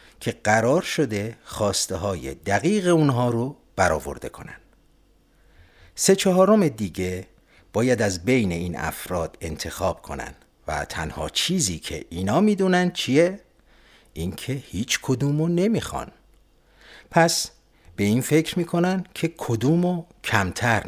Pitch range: 90-145 Hz